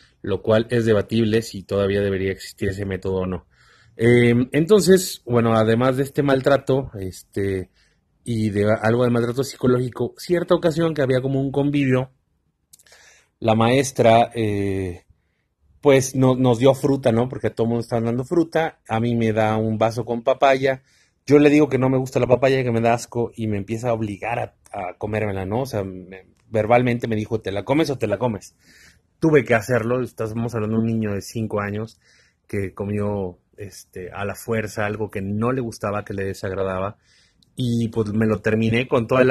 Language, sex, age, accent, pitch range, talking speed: Spanish, male, 30-49, Mexican, 105-125 Hz, 190 wpm